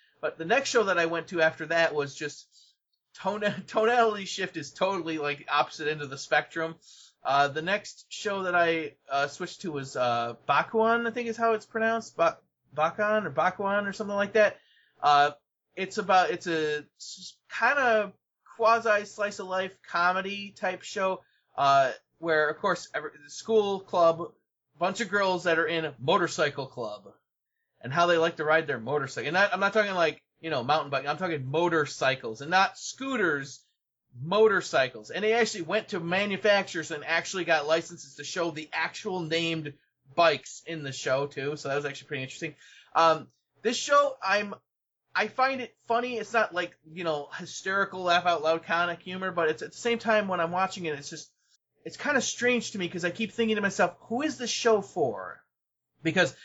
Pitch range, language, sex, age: 155-205 Hz, English, male, 20-39